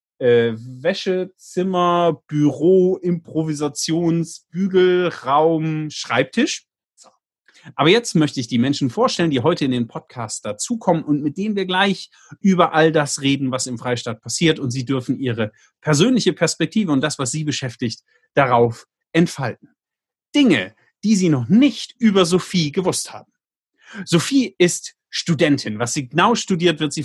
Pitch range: 135-185 Hz